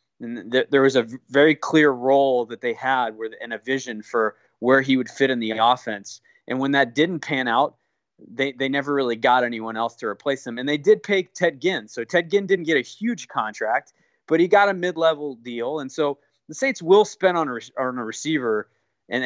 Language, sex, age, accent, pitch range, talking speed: English, male, 20-39, American, 125-160 Hz, 215 wpm